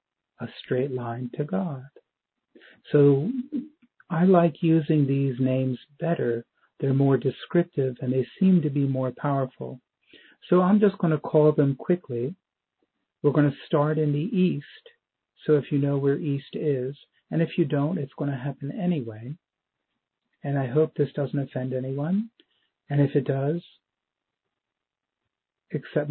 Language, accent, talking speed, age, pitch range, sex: English, American, 150 wpm, 50-69, 135-150 Hz, male